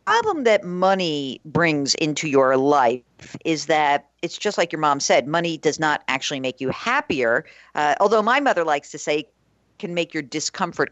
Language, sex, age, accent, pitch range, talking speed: English, female, 50-69, American, 145-200 Hz, 180 wpm